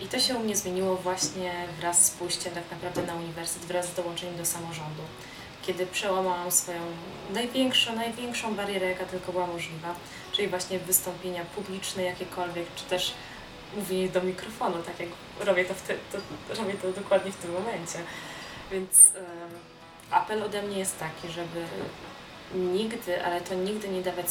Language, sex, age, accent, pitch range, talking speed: Polish, female, 20-39, native, 175-195 Hz, 165 wpm